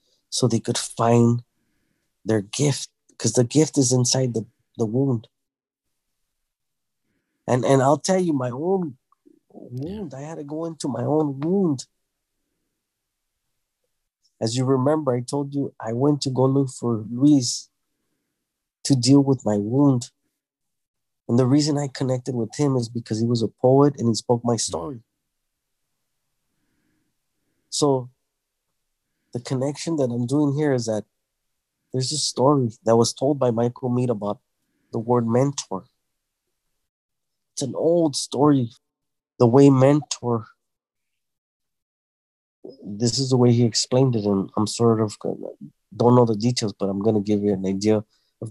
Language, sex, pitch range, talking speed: English, male, 115-140 Hz, 145 wpm